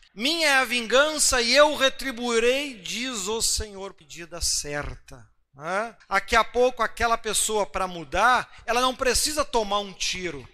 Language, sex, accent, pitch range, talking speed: Portuguese, male, Brazilian, 190-260 Hz, 150 wpm